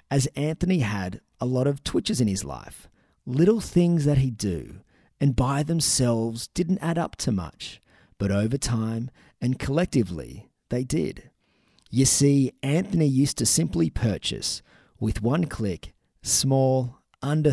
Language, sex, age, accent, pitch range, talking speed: English, male, 30-49, Australian, 105-140 Hz, 145 wpm